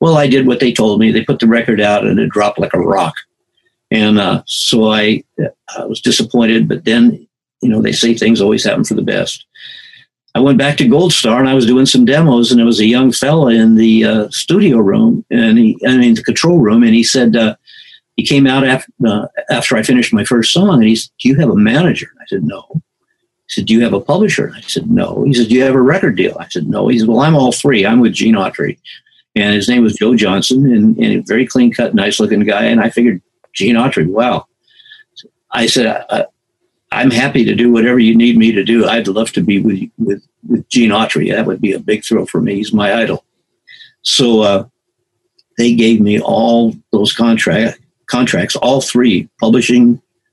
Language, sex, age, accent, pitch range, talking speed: English, male, 60-79, American, 115-160 Hz, 225 wpm